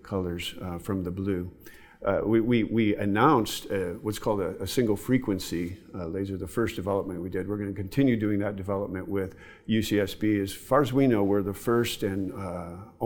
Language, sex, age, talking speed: English, male, 50-69, 195 wpm